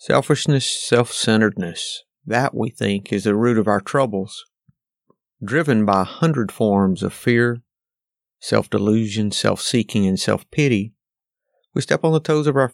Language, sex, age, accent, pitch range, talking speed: English, male, 50-69, American, 105-125 Hz, 135 wpm